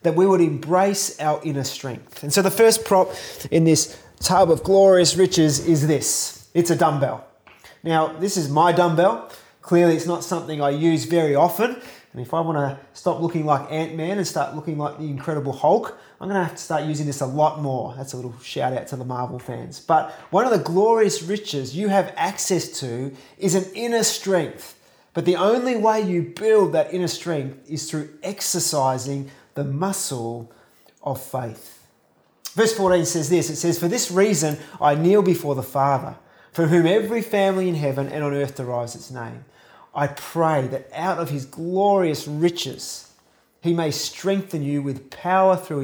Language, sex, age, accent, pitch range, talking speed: English, male, 20-39, Australian, 145-185 Hz, 185 wpm